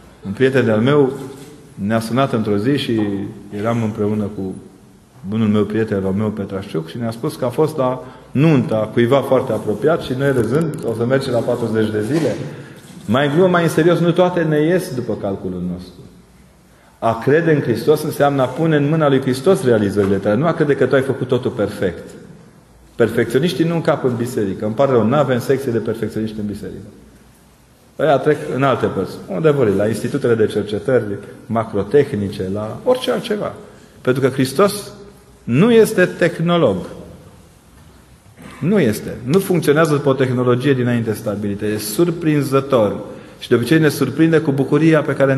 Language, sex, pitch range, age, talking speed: Romanian, male, 110-155 Hz, 30-49, 170 wpm